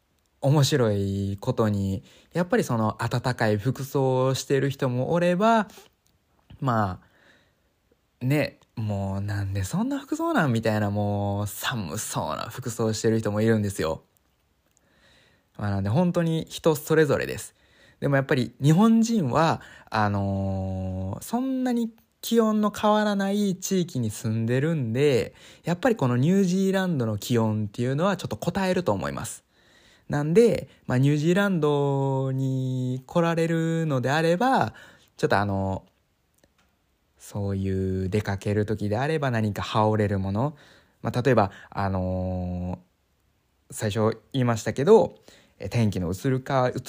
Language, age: Japanese, 20-39